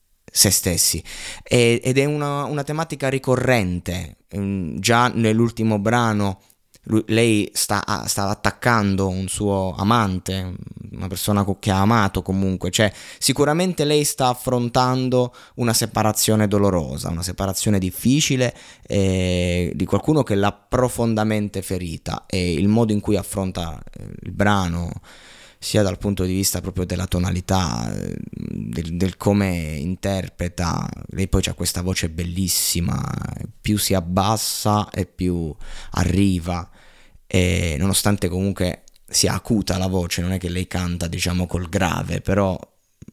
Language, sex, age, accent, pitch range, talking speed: Italian, male, 20-39, native, 90-110 Hz, 125 wpm